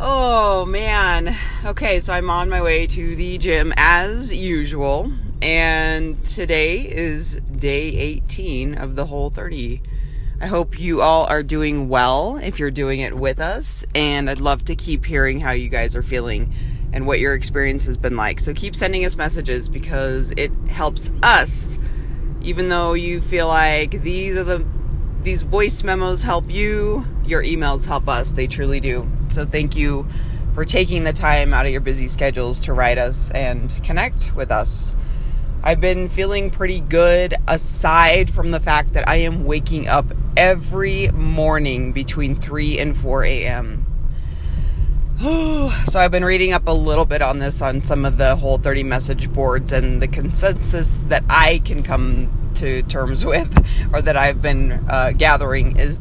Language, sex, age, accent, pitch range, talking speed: English, female, 30-49, American, 130-160 Hz, 165 wpm